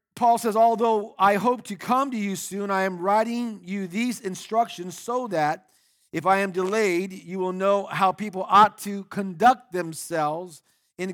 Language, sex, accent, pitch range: English, male, American, 185-230 Hz